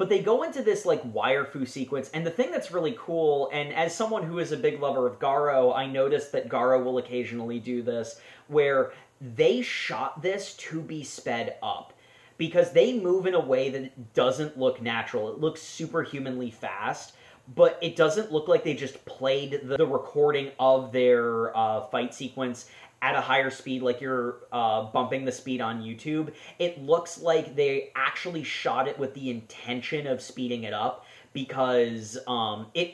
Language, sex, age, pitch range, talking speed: English, male, 30-49, 125-160 Hz, 180 wpm